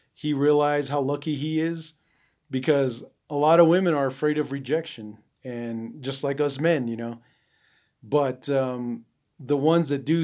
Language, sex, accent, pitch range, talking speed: English, male, American, 130-155 Hz, 165 wpm